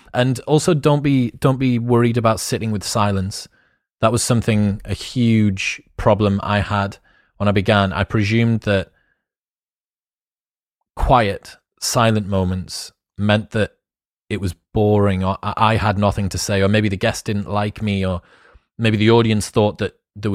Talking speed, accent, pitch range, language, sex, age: 155 wpm, British, 100-115 Hz, English, male, 30-49